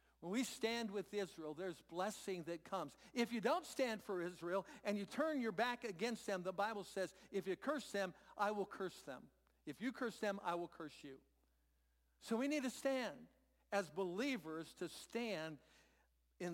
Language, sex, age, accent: English, male, 60-79, American